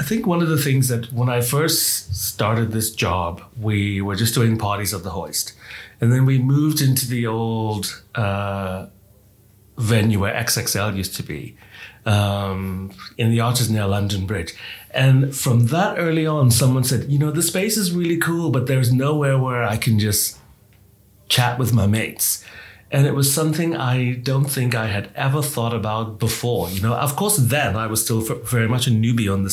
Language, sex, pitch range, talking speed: English, male, 105-130 Hz, 190 wpm